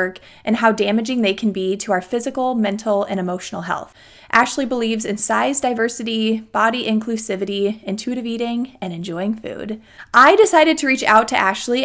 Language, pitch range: English, 195-245 Hz